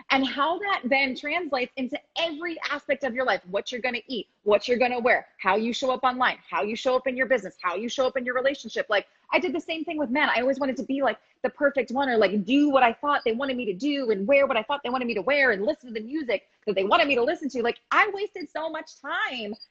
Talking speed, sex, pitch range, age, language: 285 wpm, female, 220-280 Hz, 30-49, English